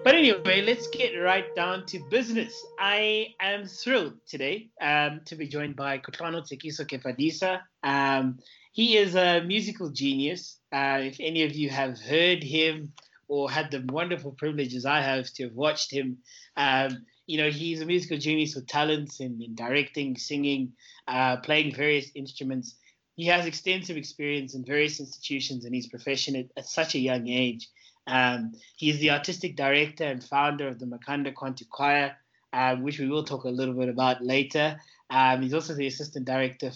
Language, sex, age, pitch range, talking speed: English, male, 20-39, 130-155 Hz, 170 wpm